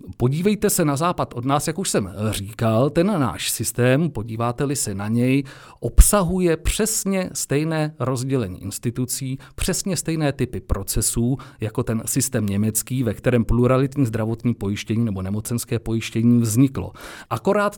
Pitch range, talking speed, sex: 110-160 Hz, 135 wpm, male